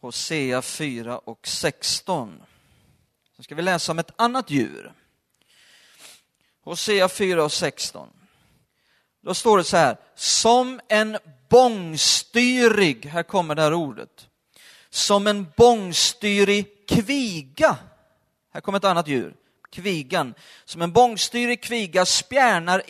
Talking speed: 115 wpm